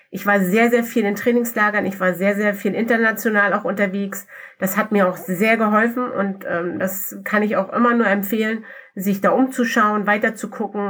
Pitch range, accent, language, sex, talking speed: 195-225 Hz, German, German, female, 200 wpm